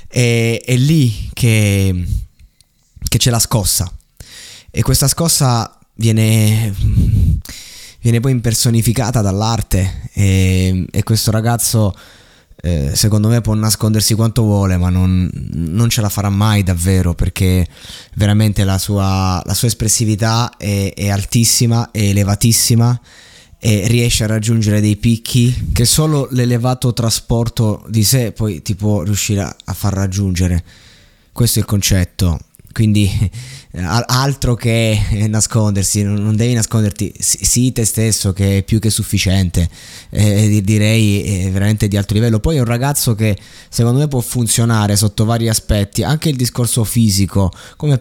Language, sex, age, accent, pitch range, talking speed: Italian, male, 20-39, native, 100-115 Hz, 135 wpm